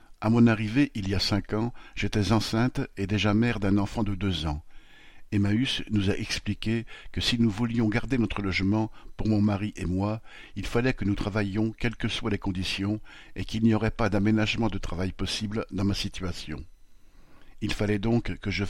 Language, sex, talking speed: French, male, 200 wpm